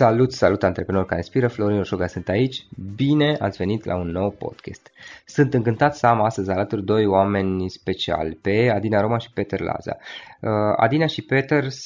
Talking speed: 170 wpm